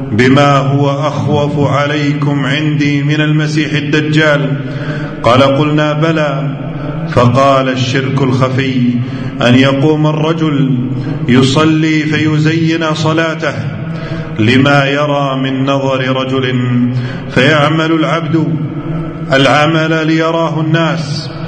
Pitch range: 135-160 Hz